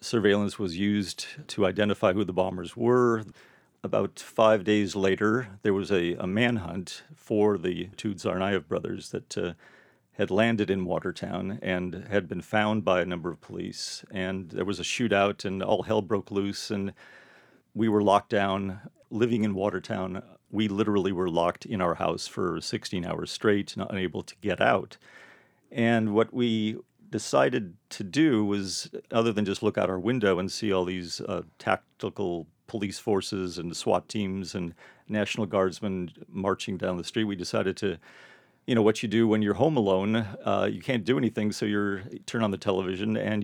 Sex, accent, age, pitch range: male, American, 40-59, 95-110 Hz